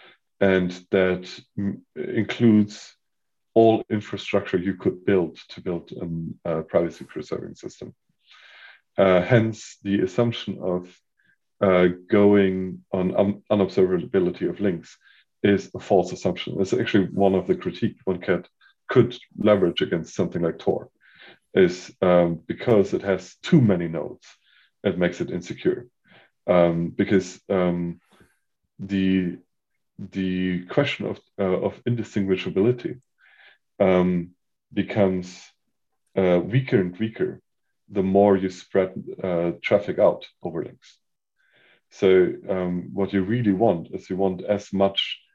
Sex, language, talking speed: male, English, 120 wpm